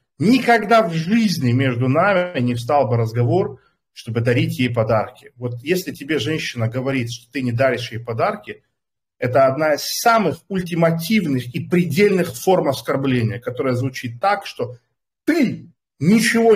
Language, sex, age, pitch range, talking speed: Russian, male, 40-59, 120-180 Hz, 140 wpm